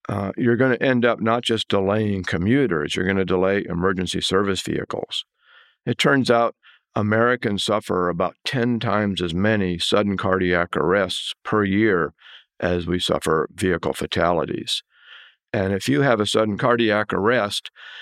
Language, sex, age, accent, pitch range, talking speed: English, male, 50-69, American, 95-115 Hz, 150 wpm